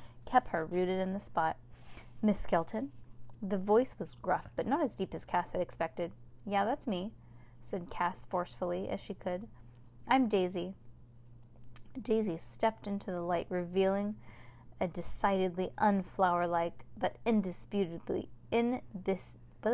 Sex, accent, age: female, American, 20-39